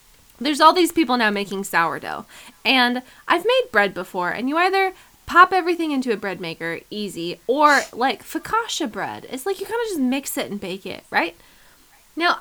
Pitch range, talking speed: 195-320 Hz, 190 wpm